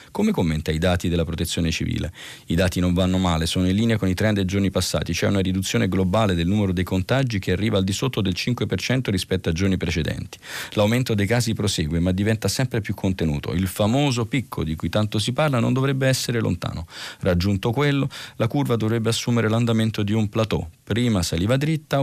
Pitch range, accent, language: 90-120 Hz, native, Italian